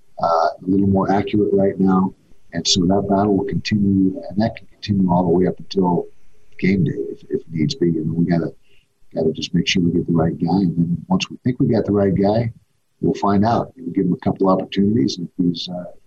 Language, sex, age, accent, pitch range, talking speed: English, male, 50-69, American, 90-105 Hz, 230 wpm